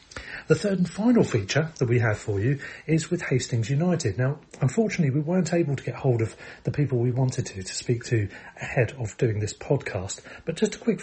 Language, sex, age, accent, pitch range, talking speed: English, male, 40-59, British, 115-145 Hz, 220 wpm